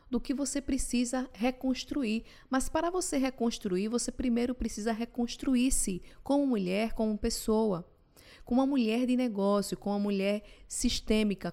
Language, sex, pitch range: English, female, 205-255 Hz